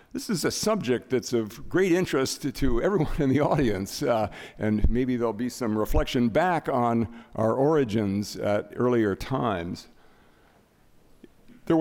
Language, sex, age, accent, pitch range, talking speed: English, male, 60-79, American, 115-155 Hz, 145 wpm